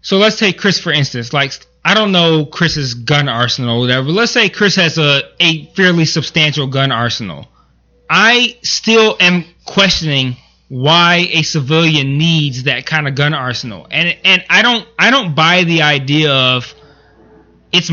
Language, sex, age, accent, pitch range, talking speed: English, male, 20-39, American, 150-195 Hz, 165 wpm